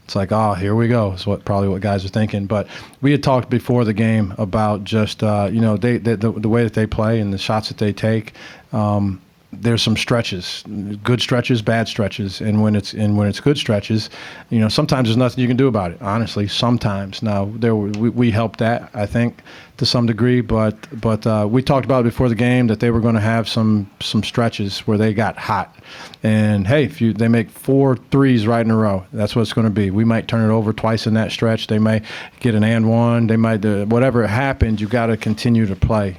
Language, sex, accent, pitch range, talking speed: English, male, American, 105-115 Hz, 240 wpm